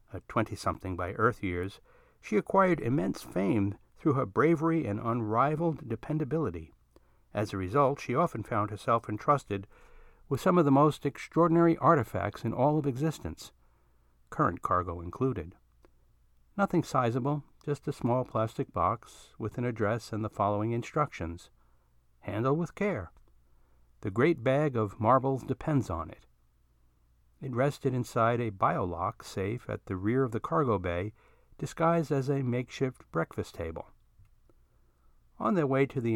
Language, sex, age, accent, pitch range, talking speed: English, male, 60-79, American, 95-140 Hz, 145 wpm